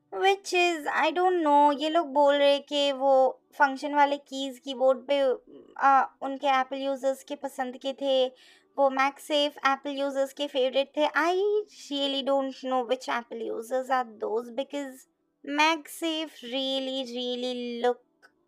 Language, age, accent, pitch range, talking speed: Hindi, 20-39, native, 260-325 Hz, 145 wpm